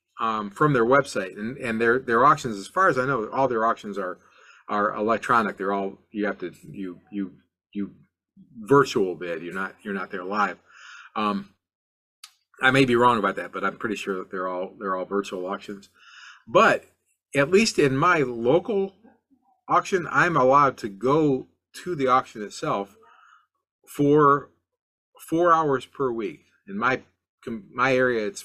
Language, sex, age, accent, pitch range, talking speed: English, male, 40-59, American, 100-135 Hz, 165 wpm